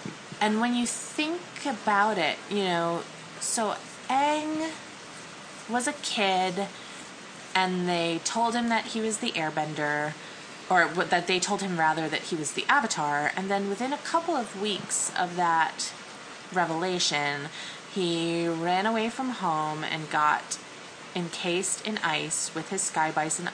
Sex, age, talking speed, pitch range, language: female, 20-39, 145 wpm, 155-205 Hz, English